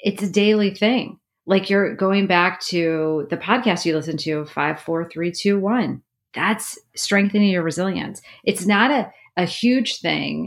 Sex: female